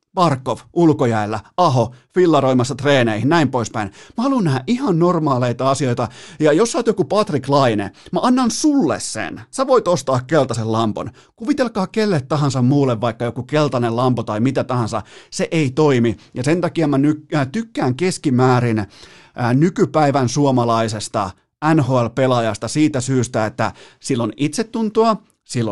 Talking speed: 140 wpm